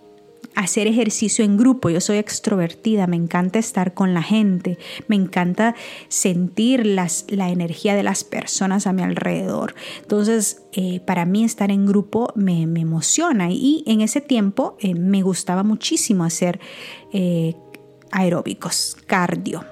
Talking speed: 140 wpm